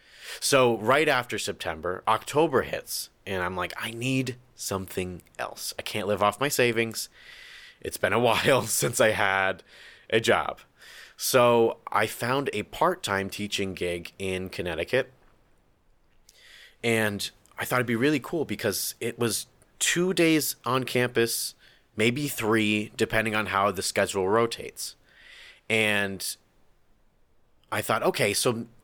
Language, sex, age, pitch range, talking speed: English, male, 30-49, 95-115 Hz, 135 wpm